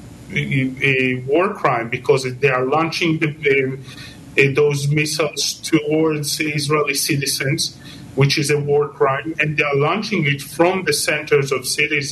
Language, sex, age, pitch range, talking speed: English, male, 40-59, 135-150 Hz, 150 wpm